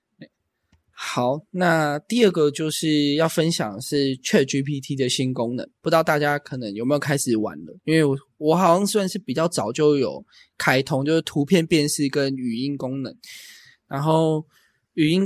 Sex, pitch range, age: male, 125-160 Hz, 20-39